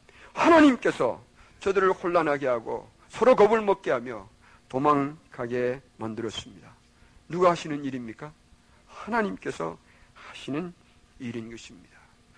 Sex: male